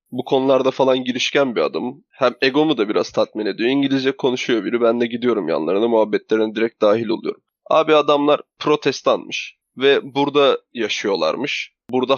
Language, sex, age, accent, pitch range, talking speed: Turkish, male, 20-39, native, 120-145 Hz, 150 wpm